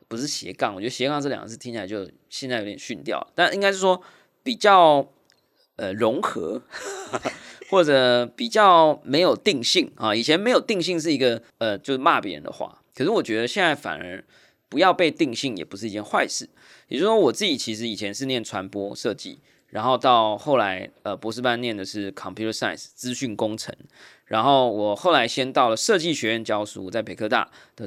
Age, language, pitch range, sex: 20-39, Chinese, 105-145 Hz, male